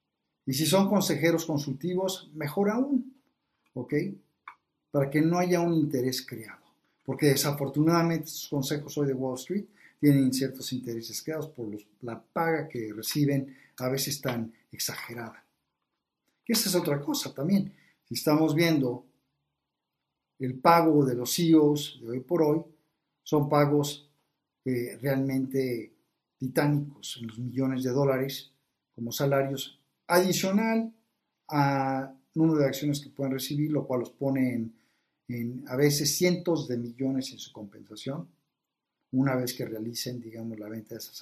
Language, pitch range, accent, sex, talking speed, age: Spanish, 130-160 Hz, Mexican, male, 145 wpm, 50-69